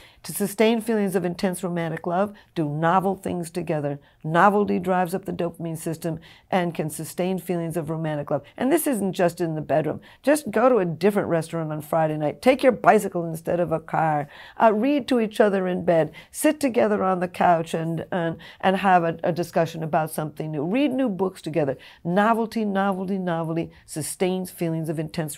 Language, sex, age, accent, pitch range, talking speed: English, female, 50-69, American, 165-200 Hz, 190 wpm